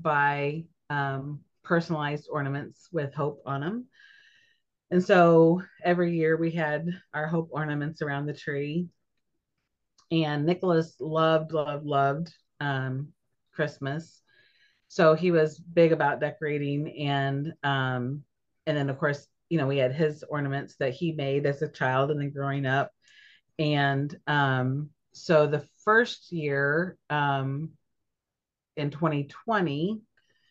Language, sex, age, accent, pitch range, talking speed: English, female, 30-49, American, 145-175 Hz, 125 wpm